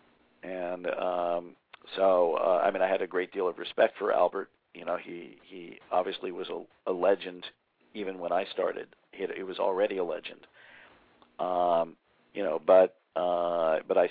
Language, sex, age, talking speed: English, male, 50-69, 175 wpm